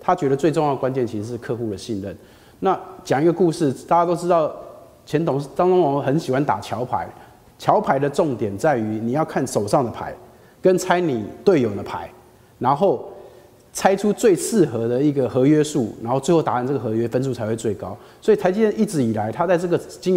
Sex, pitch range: male, 125-180 Hz